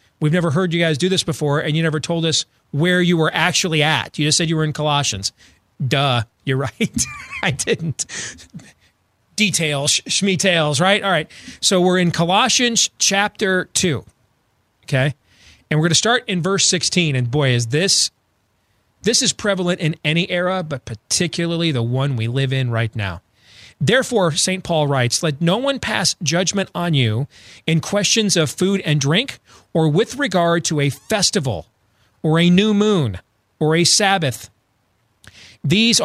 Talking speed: 165 wpm